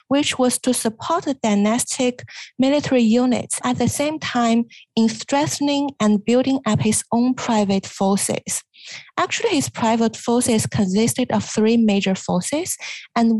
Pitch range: 215-260 Hz